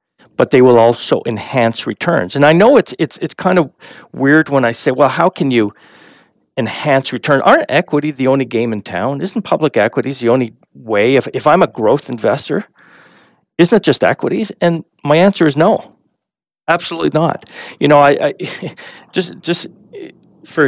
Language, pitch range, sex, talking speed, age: English, 115-155 Hz, male, 175 wpm, 40-59